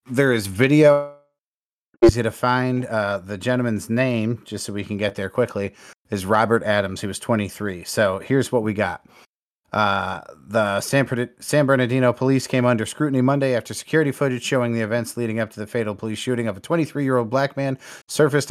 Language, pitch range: English, 115-140 Hz